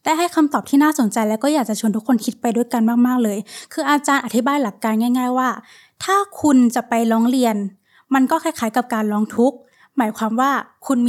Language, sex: Thai, female